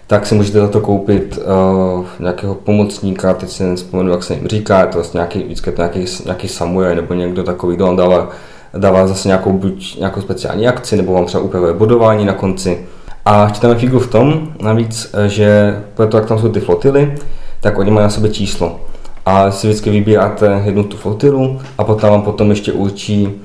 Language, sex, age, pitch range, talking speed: Czech, male, 20-39, 95-110 Hz, 195 wpm